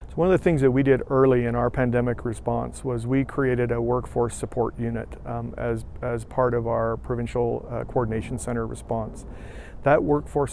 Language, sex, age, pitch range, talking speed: English, male, 40-59, 115-125 Hz, 190 wpm